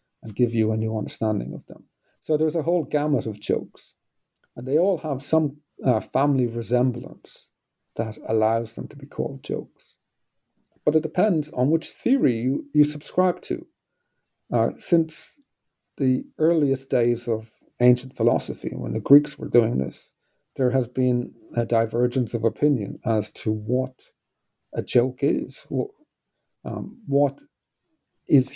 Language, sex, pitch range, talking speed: English, male, 115-135 Hz, 145 wpm